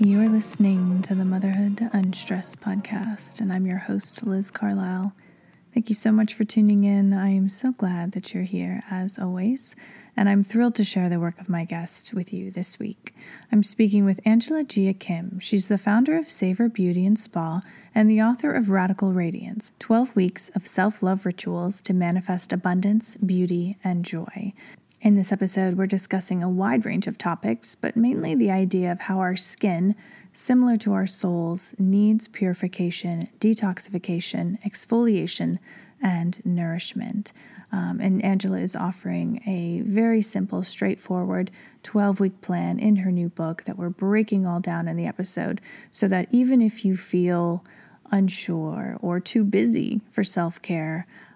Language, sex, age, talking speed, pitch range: English, female, 30-49, 160 wpm, 185-215 Hz